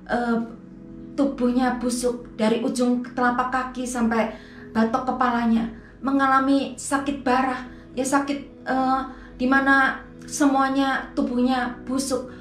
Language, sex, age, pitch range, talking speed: Indonesian, female, 30-49, 250-315 Hz, 95 wpm